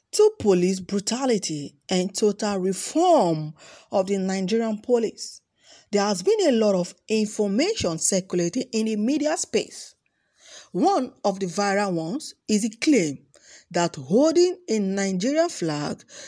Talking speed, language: 130 wpm, English